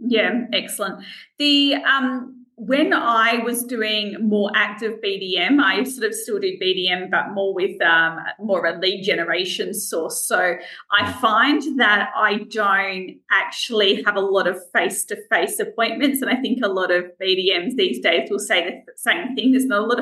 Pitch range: 190-250 Hz